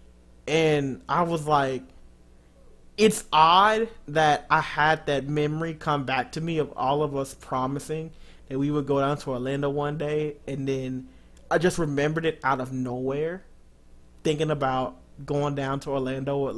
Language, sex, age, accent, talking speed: English, male, 30-49, American, 165 wpm